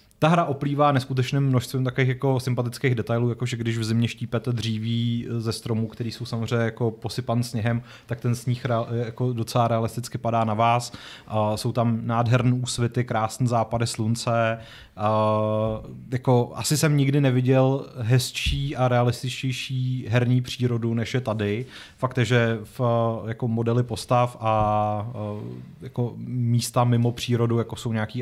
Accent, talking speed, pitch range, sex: native, 145 wpm, 110-130 Hz, male